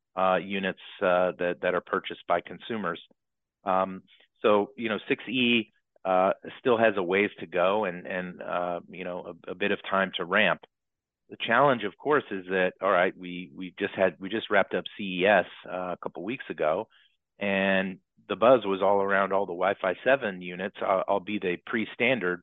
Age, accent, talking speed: 30-49, American, 185 wpm